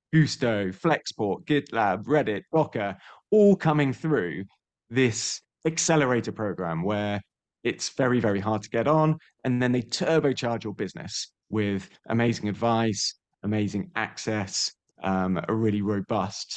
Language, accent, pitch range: English, British, 105-145 Hz